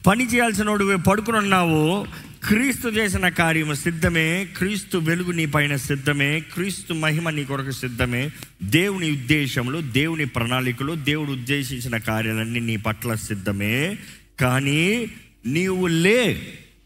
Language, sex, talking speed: Telugu, male, 105 wpm